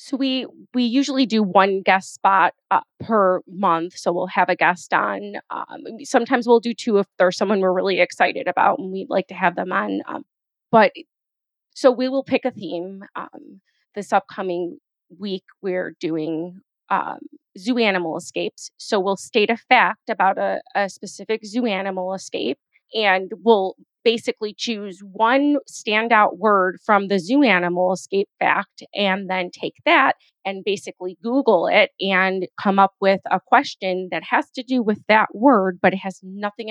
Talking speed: 170 wpm